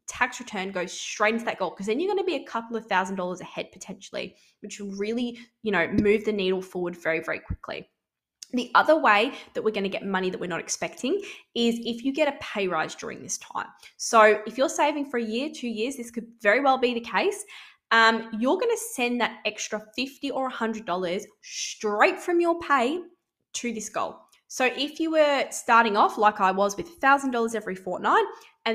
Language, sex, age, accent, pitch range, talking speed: English, female, 10-29, Australian, 205-270 Hz, 220 wpm